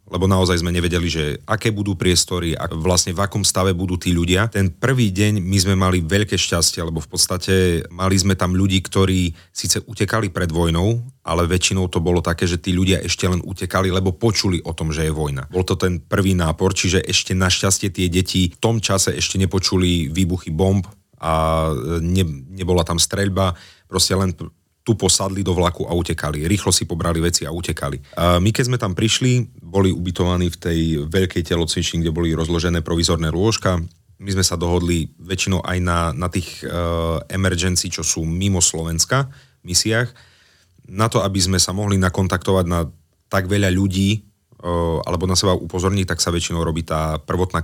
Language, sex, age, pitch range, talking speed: Slovak, male, 30-49, 85-95 Hz, 185 wpm